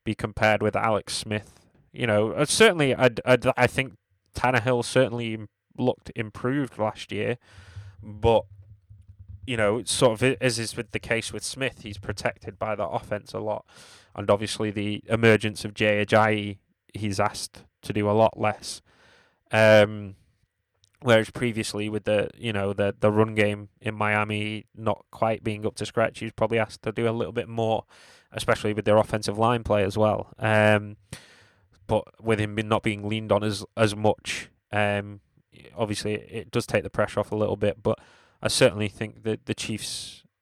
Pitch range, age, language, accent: 100-115 Hz, 10-29, English, British